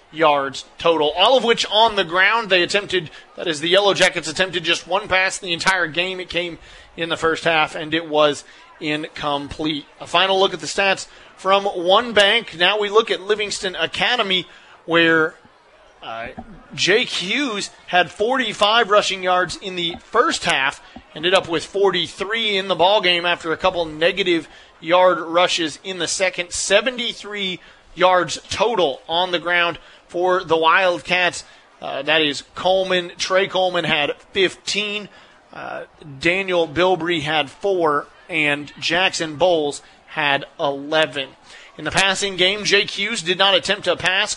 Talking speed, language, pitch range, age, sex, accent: 155 wpm, English, 160-195 Hz, 30-49, male, American